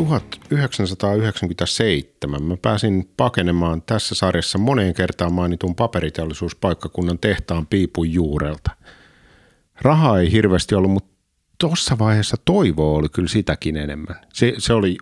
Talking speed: 110 wpm